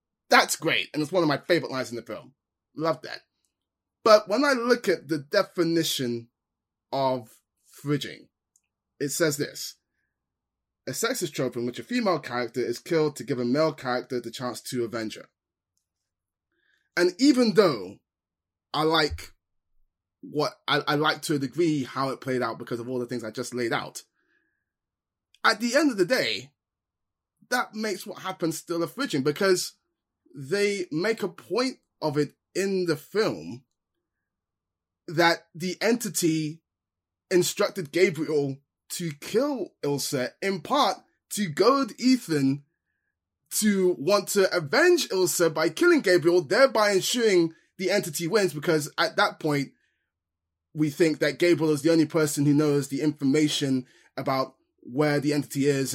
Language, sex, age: English, male, 10-29